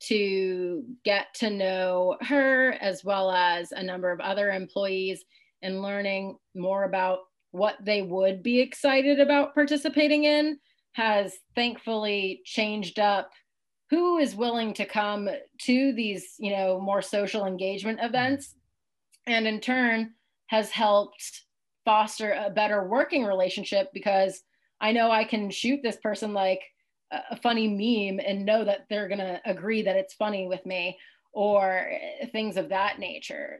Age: 30-49